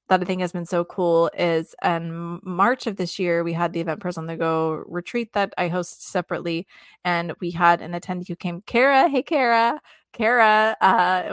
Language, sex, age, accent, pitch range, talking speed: English, female, 20-39, American, 170-205 Hz, 200 wpm